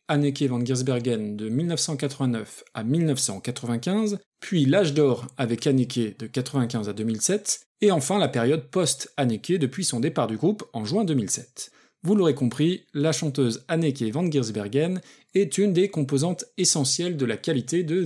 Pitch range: 130-195 Hz